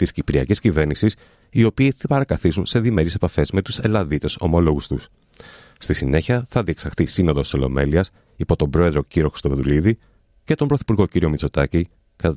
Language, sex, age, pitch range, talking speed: Greek, male, 30-49, 75-110 Hz, 155 wpm